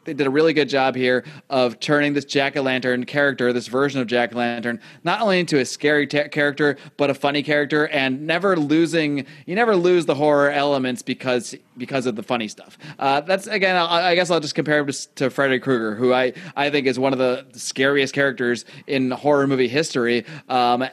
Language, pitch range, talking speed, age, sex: English, 125-155 Hz, 205 wpm, 30-49, male